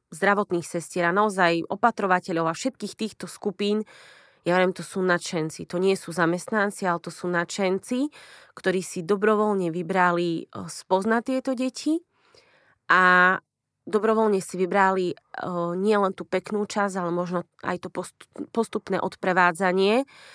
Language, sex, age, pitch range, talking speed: Slovak, female, 20-39, 175-205 Hz, 125 wpm